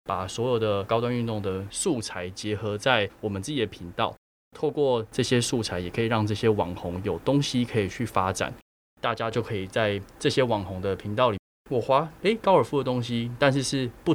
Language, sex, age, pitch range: Chinese, male, 20-39, 95-120 Hz